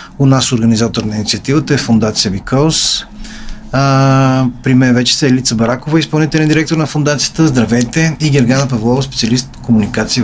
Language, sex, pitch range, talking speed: Bulgarian, male, 115-150 Hz, 150 wpm